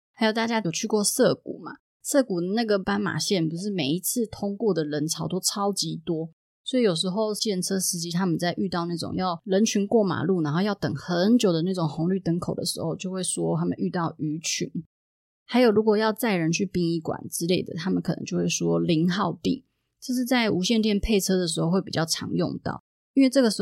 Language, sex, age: Chinese, female, 20-39